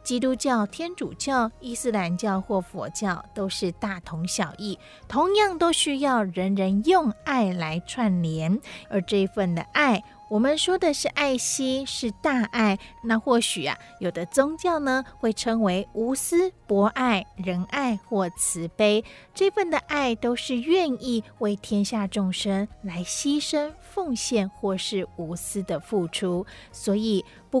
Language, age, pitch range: Chinese, 30-49, 195-265 Hz